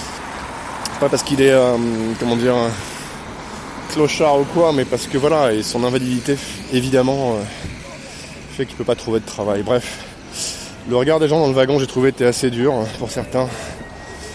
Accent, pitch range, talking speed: French, 115-150 Hz, 170 wpm